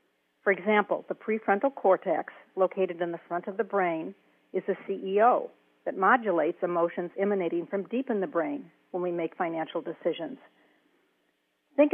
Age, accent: 50-69, American